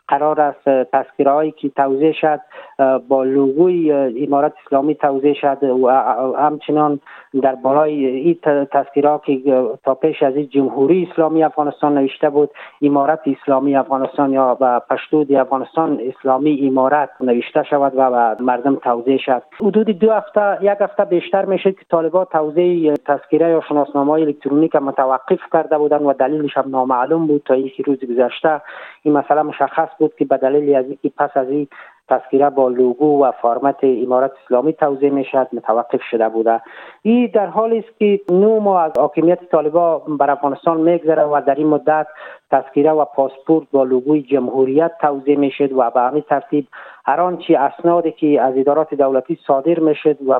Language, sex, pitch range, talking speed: Persian, male, 135-155 Hz, 155 wpm